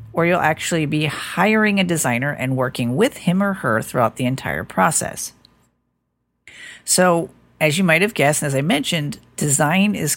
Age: 40-59